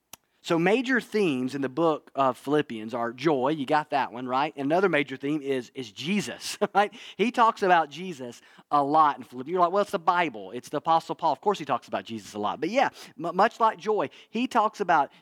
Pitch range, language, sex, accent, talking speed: 135-200 Hz, English, male, American, 220 wpm